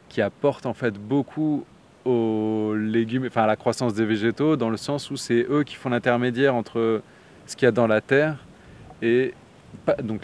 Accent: French